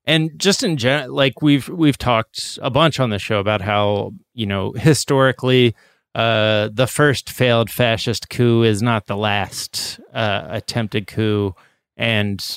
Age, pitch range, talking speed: 30-49, 105-125 Hz, 155 wpm